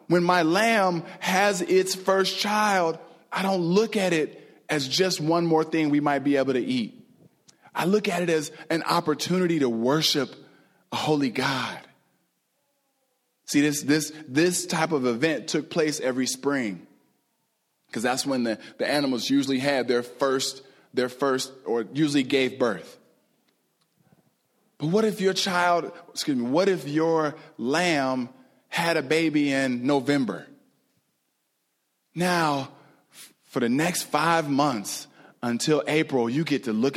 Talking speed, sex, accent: 150 wpm, male, American